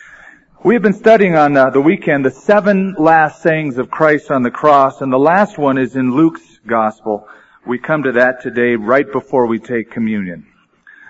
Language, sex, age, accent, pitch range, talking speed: English, male, 40-59, American, 130-175 Hz, 180 wpm